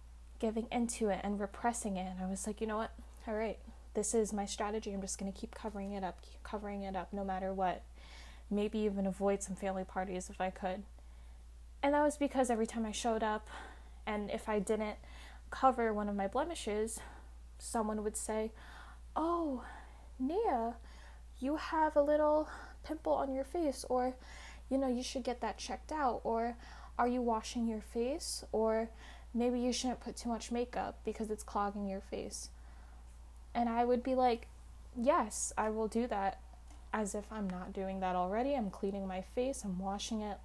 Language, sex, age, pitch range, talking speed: English, female, 10-29, 195-235 Hz, 185 wpm